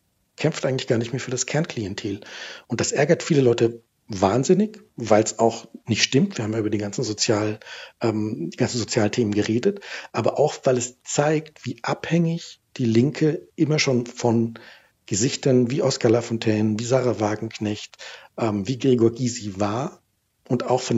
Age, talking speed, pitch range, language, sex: 60-79, 160 wpm, 105-130 Hz, German, male